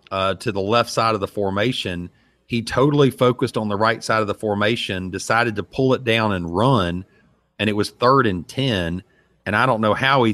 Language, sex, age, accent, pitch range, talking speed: English, male, 40-59, American, 105-125 Hz, 215 wpm